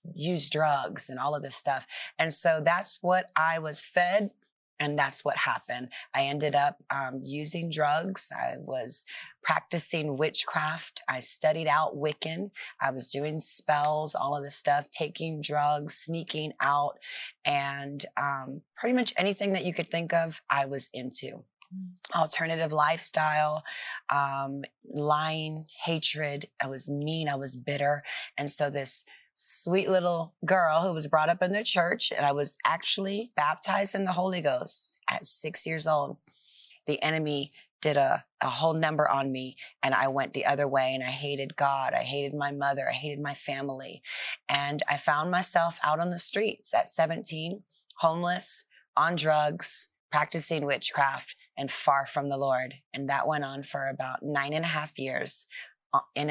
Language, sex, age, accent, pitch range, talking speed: English, female, 30-49, American, 140-170 Hz, 165 wpm